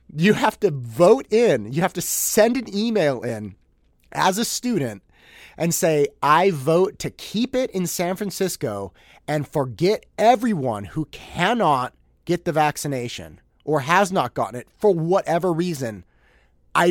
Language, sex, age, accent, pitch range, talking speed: English, male, 30-49, American, 125-200 Hz, 150 wpm